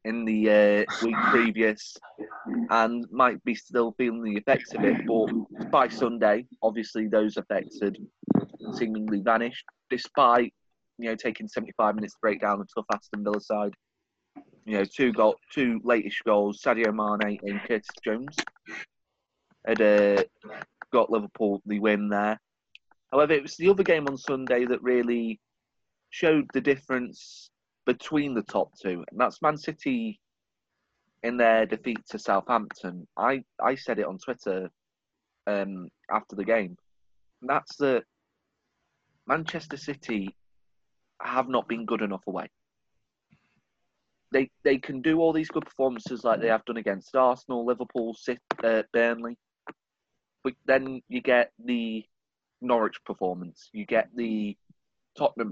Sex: male